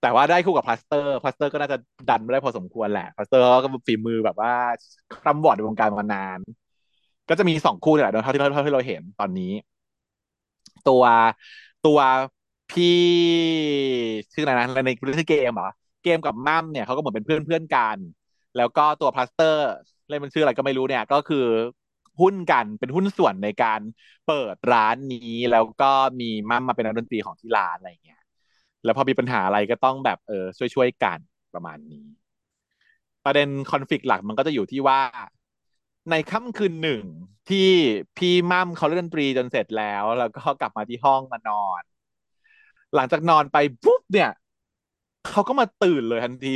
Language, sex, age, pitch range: Thai, male, 30-49, 120-170 Hz